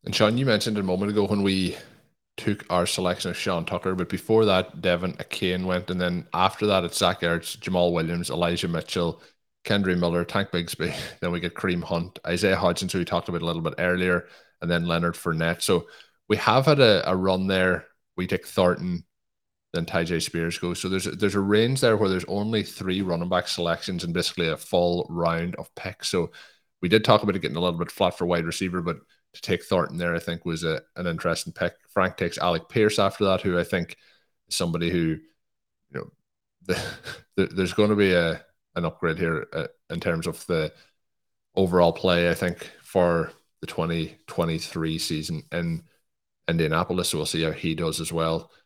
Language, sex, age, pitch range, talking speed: English, male, 20-39, 85-95 Hz, 200 wpm